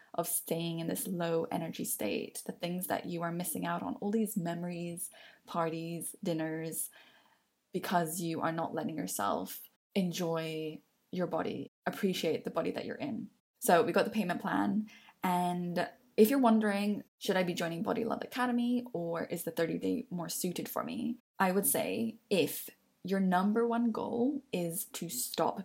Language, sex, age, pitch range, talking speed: English, female, 10-29, 170-230 Hz, 170 wpm